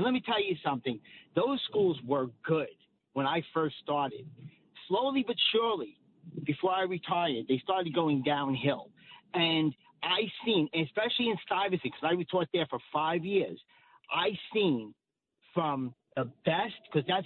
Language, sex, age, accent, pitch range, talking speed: English, male, 40-59, American, 145-200 Hz, 150 wpm